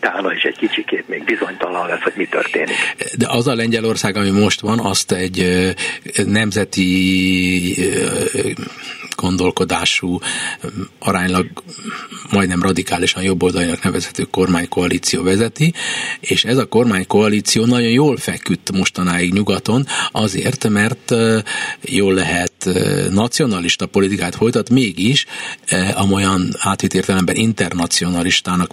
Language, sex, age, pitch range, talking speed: Hungarian, male, 50-69, 90-115 Hz, 100 wpm